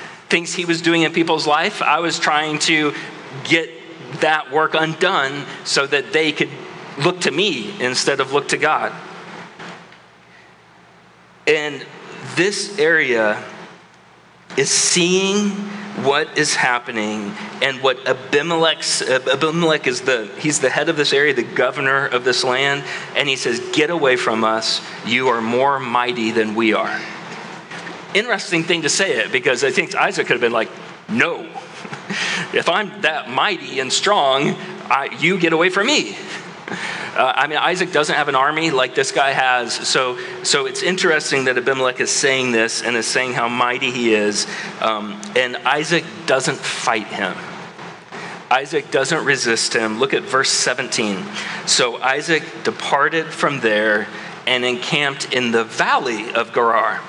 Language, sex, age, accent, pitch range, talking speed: English, male, 40-59, American, 125-180 Hz, 155 wpm